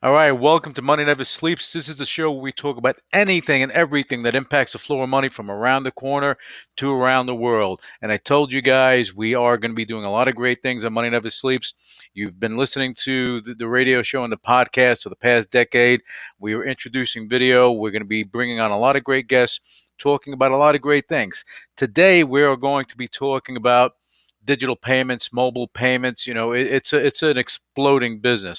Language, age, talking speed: English, 50-69, 225 wpm